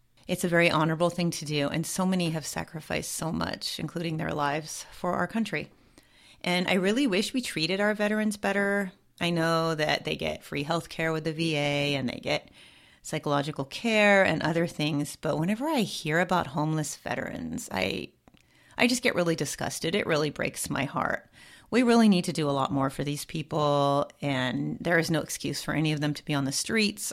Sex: female